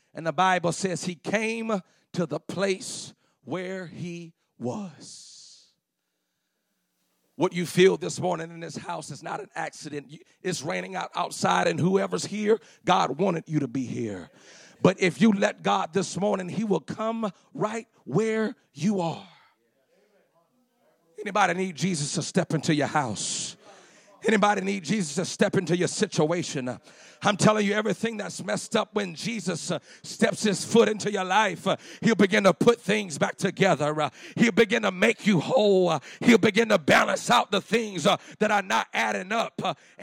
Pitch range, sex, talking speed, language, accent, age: 155-205 Hz, male, 170 wpm, English, American, 40-59